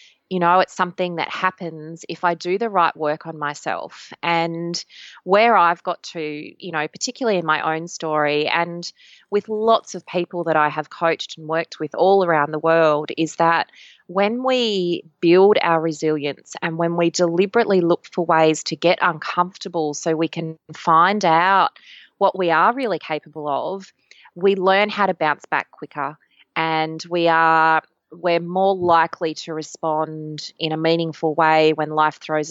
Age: 20-39